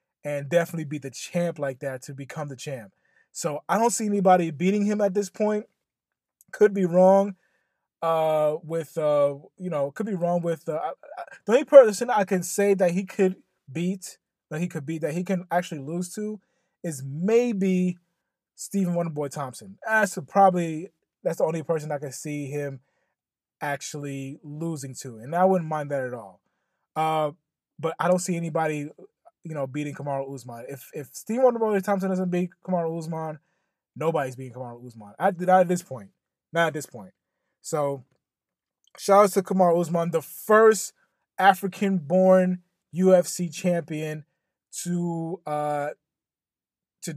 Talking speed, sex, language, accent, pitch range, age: 165 wpm, male, English, American, 150-185 Hz, 20-39